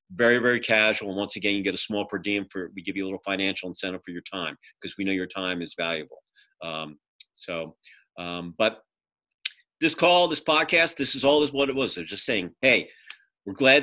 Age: 40-59